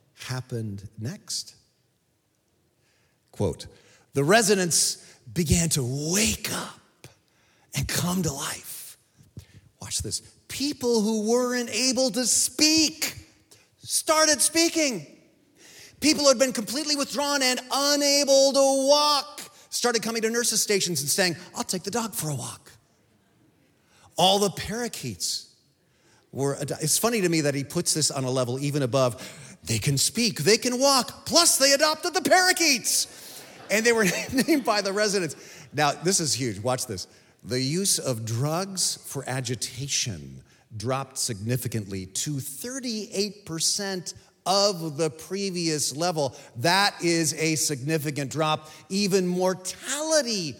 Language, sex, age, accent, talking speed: English, male, 40-59, American, 130 wpm